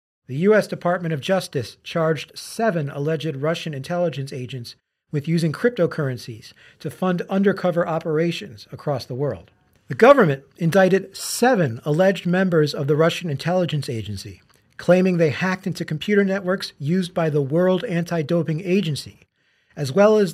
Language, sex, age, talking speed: English, male, 40-59, 140 wpm